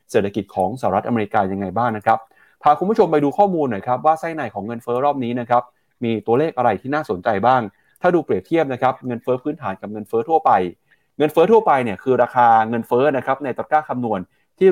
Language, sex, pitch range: Thai, male, 115-145 Hz